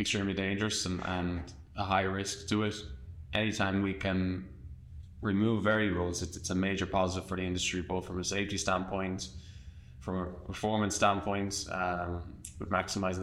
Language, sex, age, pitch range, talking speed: English, male, 20-39, 90-100 Hz, 155 wpm